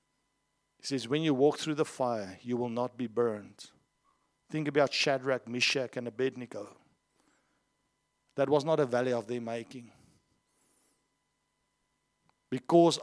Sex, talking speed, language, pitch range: male, 130 wpm, English, 125-155 Hz